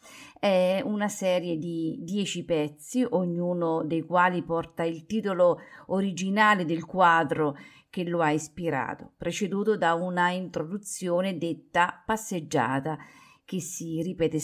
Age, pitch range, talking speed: 40-59, 160-200 Hz, 115 wpm